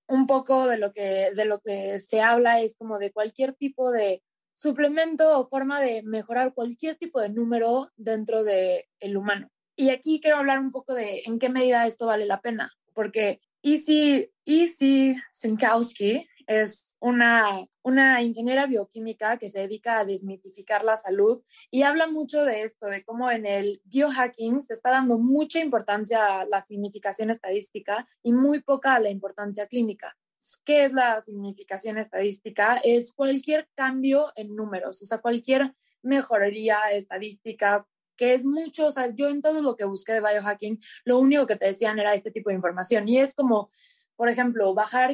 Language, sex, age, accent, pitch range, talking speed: Spanish, female, 20-39, Mexican, 205-265 Hz, 170 wpm